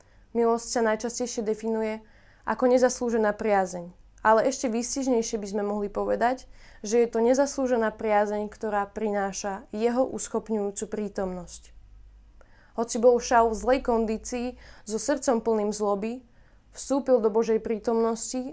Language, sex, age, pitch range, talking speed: Slovak, female, 20-39, 195-240 Hz, 125 wpm